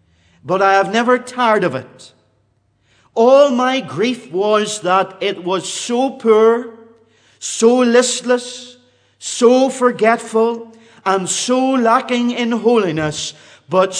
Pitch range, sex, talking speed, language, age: 145-245 Hz, male, 110 wpm, English, 50-69